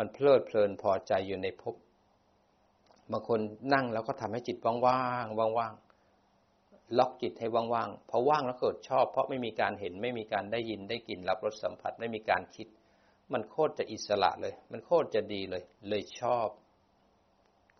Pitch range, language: 105-130 Hz, Thai